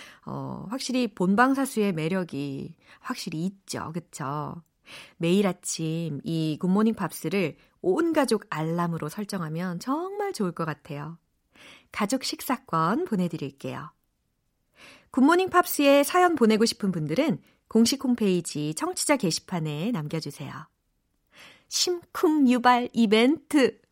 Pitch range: 170-260 Hz